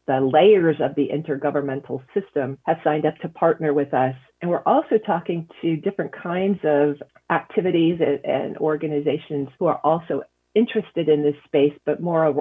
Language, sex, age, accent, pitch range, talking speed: English, female, 40-59, American, 145-180 Hz, 160 wpm